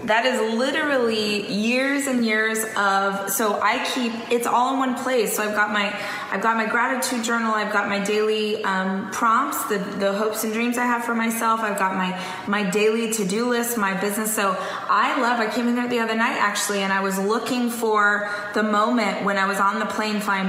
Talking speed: 215 wpm